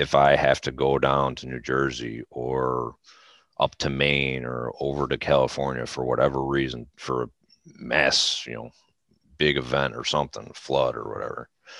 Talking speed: 165 wpm